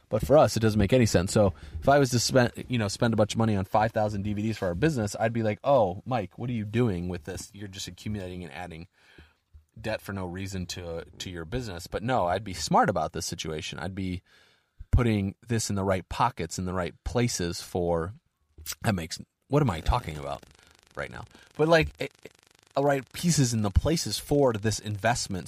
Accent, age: American, 30-49